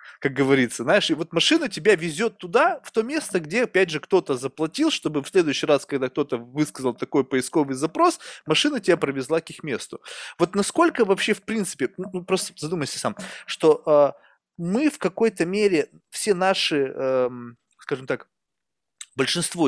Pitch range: 140-195 Hz